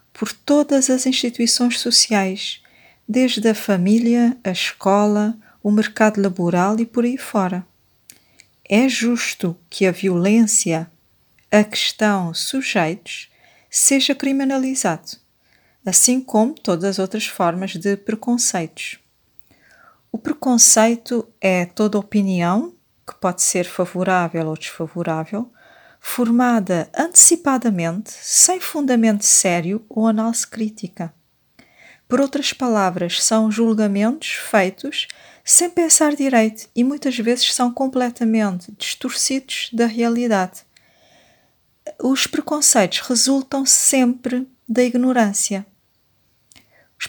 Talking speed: 100 wpm